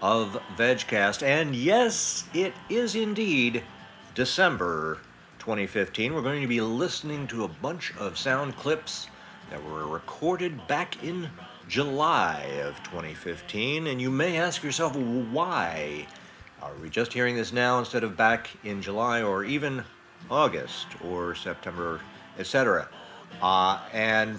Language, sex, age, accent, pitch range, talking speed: English, male, 60-79, American, 100-140 Hz, 130 wpm